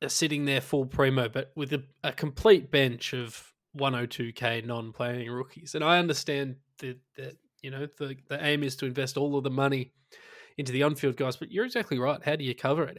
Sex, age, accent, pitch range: male, 20-39, Australian, 130-160 Hz